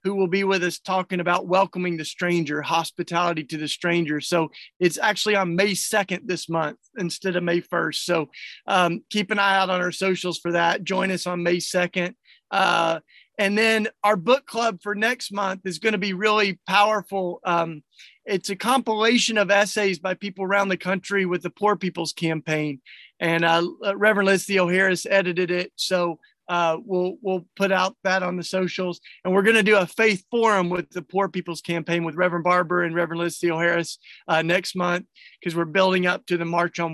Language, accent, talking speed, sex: English, American, 200 wpm, male